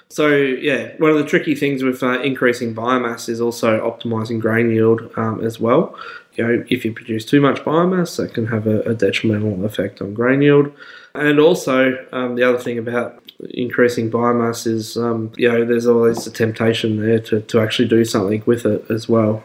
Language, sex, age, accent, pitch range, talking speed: English, male, 20-39, Australian, 115-125 Hz, 195 wpm